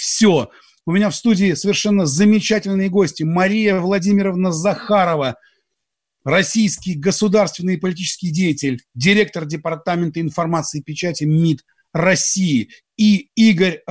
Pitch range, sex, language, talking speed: 165-200 Hz, male, Russian, 110 wpm